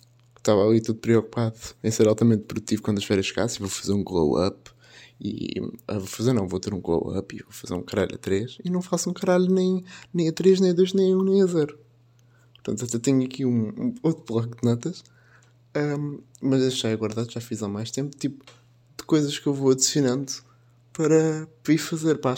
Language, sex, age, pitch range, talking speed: Portuguese, male, 20-39, 120-150 Hz, 225 wpm